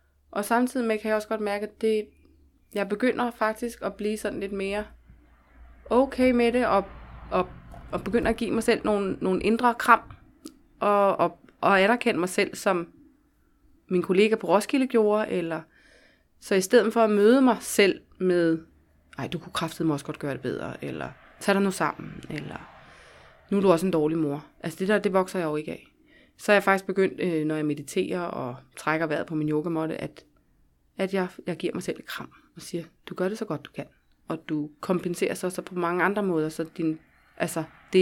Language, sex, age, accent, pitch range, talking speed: Danish, female, 20-39, native, 165-215 Hz, 210 wpm